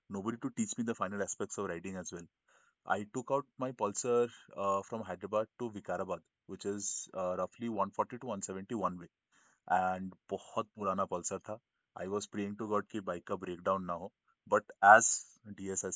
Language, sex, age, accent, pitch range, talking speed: Hindi, male, 20-39, native, 95-125 Hz, 185 wpm